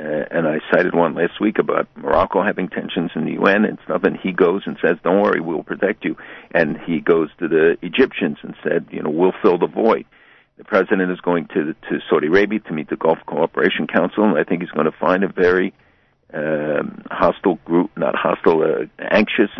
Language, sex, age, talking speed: English, male, 60-79, 210 wpm